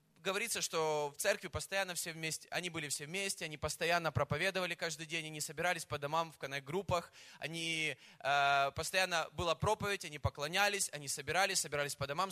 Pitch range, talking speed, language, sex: 150-195 Hz, 170 wpm, Russian, male